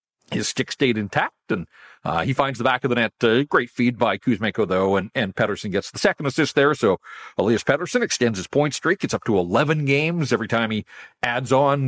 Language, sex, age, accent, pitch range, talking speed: English, male, 50-69, American, 115-145 Hz, 220 wpm